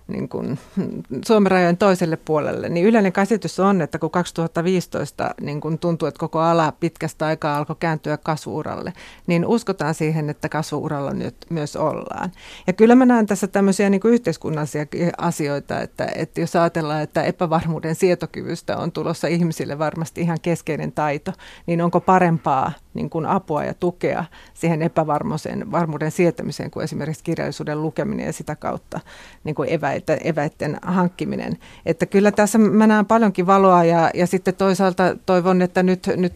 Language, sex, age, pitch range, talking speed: Finnish, female, 30-49, 160-190 Hz, 150 wpm